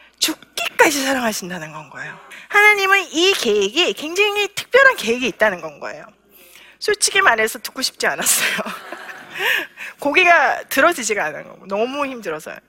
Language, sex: Korean, female